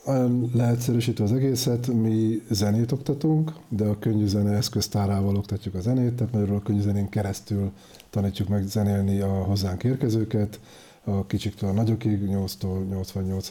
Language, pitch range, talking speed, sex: Hungarian, 100-115 Hz, 125 wpm, male